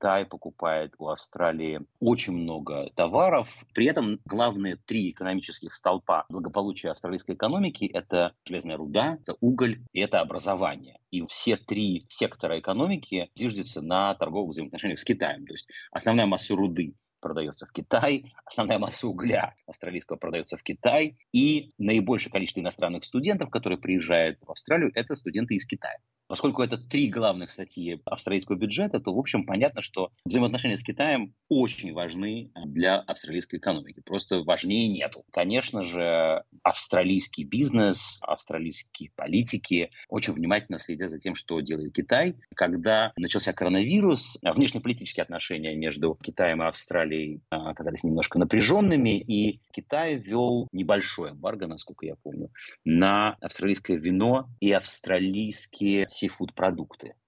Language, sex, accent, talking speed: Russian, male, native, 130 wpm